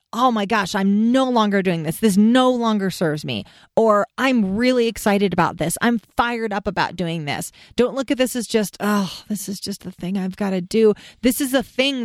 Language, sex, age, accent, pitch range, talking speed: English, female, 40-59, American, 195-250 Hz, 225 wpm